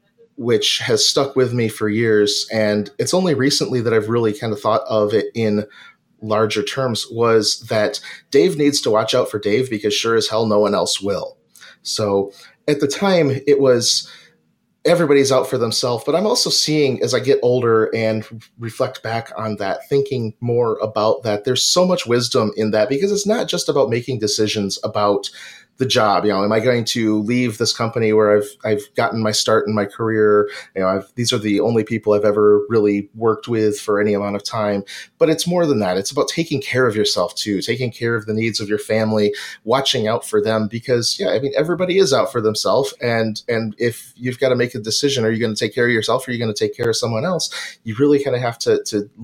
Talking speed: 225 wpm